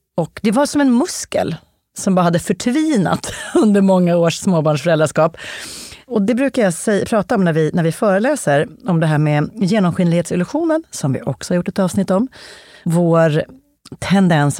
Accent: native